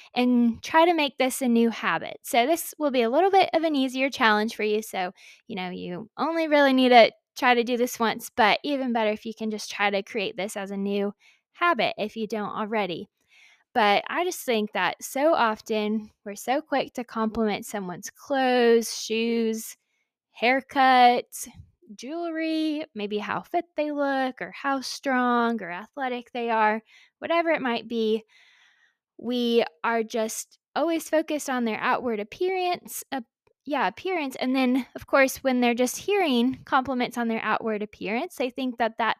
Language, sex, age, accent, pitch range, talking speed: English, female, 10-29, American, 215-275 Hz, 175 wpm